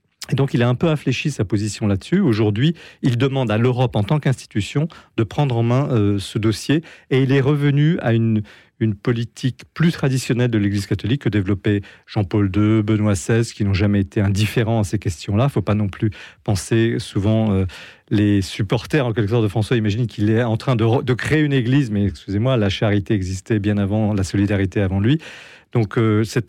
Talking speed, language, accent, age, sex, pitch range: 210 wpm, French, French, 40-59, male, 105-130 Hz